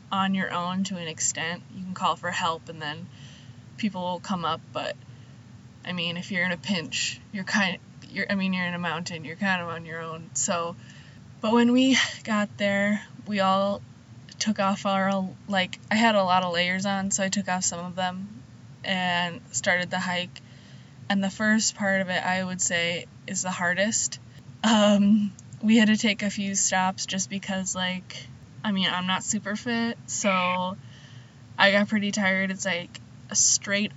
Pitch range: 175-200 Hz